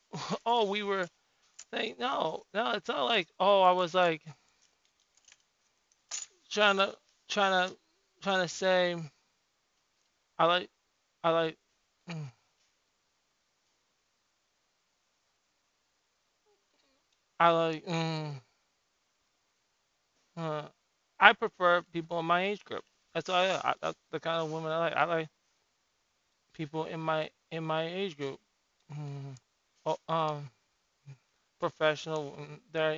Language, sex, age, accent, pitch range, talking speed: English, male, 20-39, American, 150-180 Hz, 110 wpm